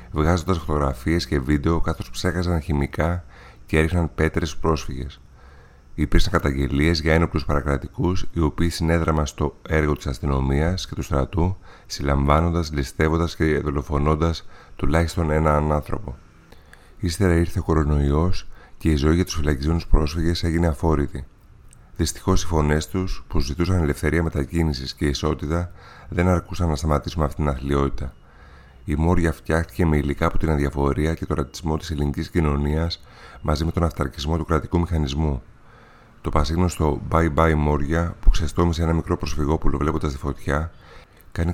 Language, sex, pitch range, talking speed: Greek, male, 75-85 Hz, 145 wpm